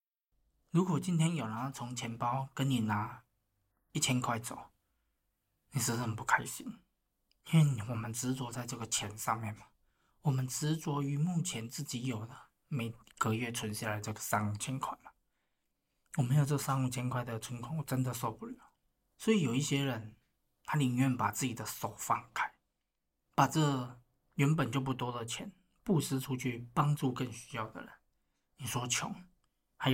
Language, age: Chinese, 20-39